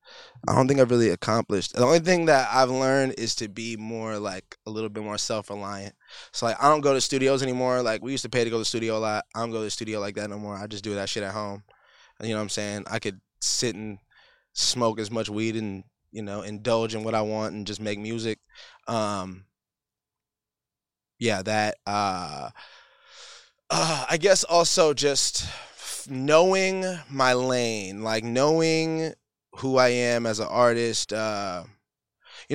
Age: 20-39